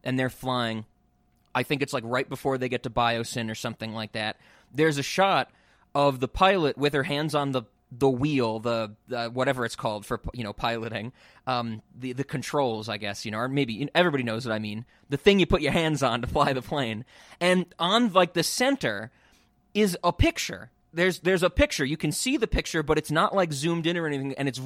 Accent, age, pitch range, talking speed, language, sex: American, 20-39, 120-160 Hz, 225 wpm, English, male